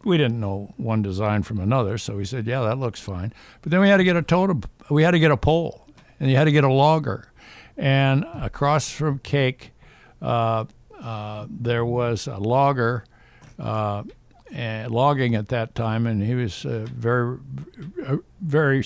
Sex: male